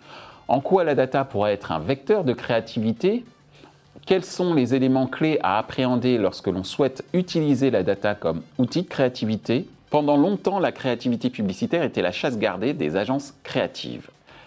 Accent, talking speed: French, 160 wpm